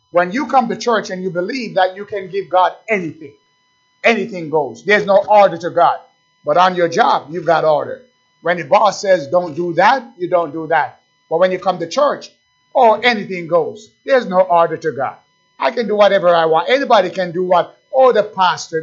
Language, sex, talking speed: English, male, 210 wpm